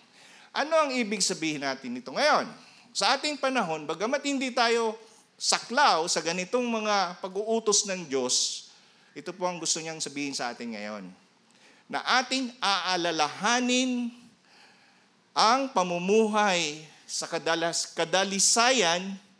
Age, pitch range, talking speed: 40-59, 165-235 Hz, 115 wpm